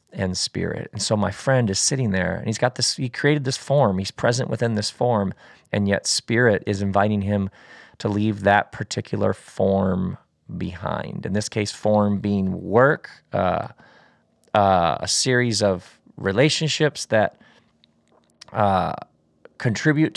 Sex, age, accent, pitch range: male, 40-59, American, 105-130 Hz